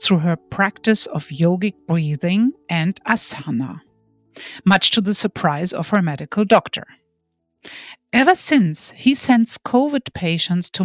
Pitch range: 160-220 Hz